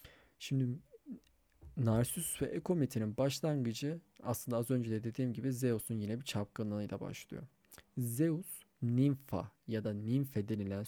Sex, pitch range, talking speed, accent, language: male, 110-140 Hz, 120 wpm, native, Turkish